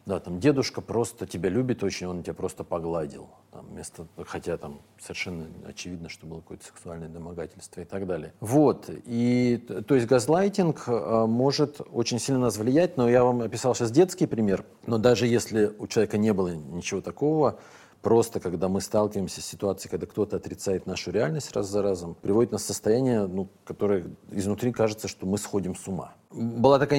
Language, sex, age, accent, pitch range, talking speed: Russian, male, 40-59, native, 95-115 Hz, 175 wpm